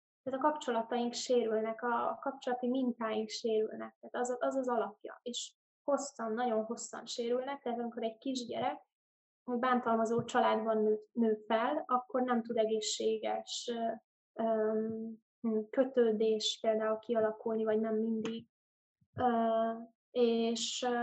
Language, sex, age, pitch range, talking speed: Hungarian, female, 20-39, 225-250 Hz, 110 wpm